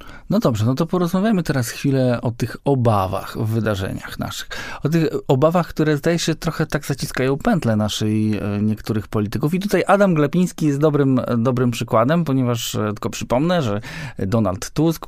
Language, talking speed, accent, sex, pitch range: Polish, 160 wpm, native, male, 110-150 Hz